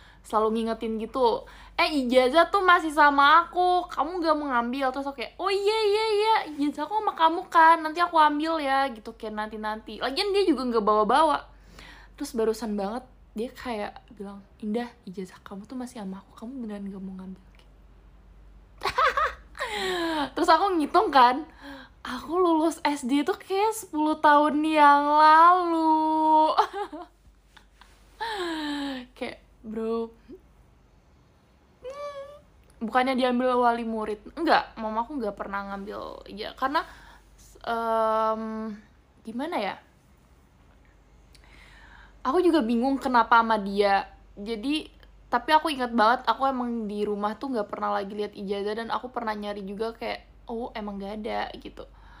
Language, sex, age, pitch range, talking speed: Malay, female, 10-29, 220-320 Hz, 135 wpm